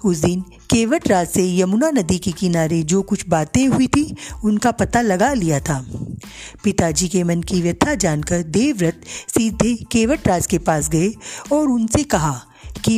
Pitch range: 170-240 Hz